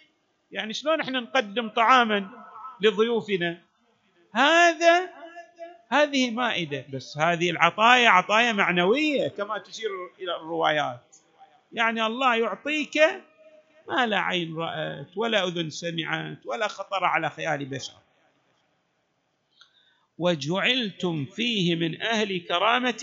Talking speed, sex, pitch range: 100 wpm, male, 160-245 Hz